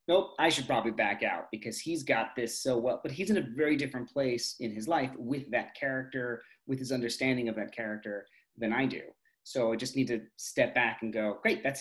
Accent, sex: American, male